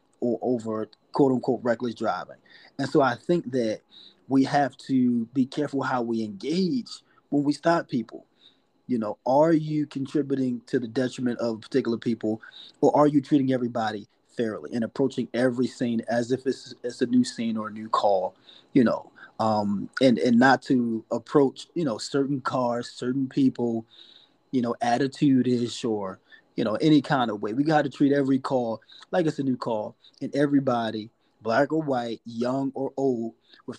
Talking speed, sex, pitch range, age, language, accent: 180 wpm, male, 115-135 Hz, 30-49, English, American